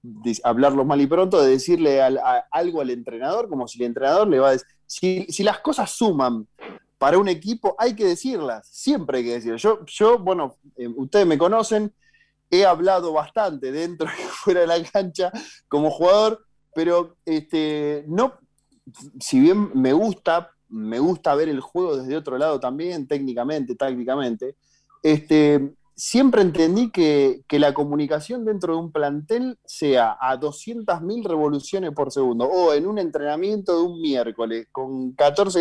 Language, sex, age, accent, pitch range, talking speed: Spanish, male, 30-49, Argentinian, 135-200 Hz, 160 wpm